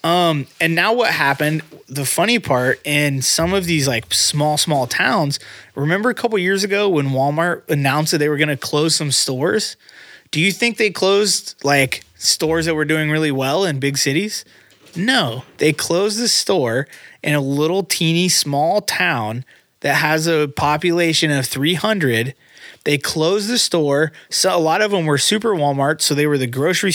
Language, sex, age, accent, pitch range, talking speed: English, male, 20-39, American, 140-185 Hz, 180 wpm